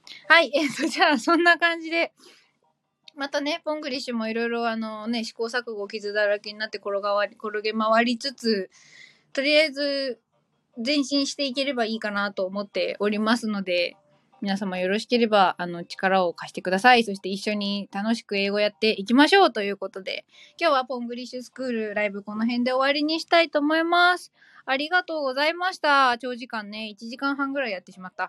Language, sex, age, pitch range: Japanese, female, 20-39, 210-290 Hz